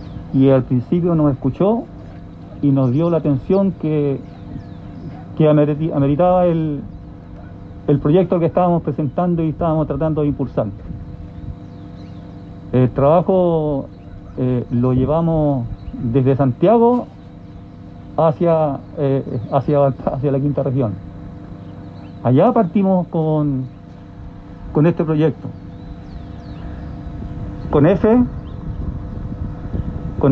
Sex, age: male, 50-69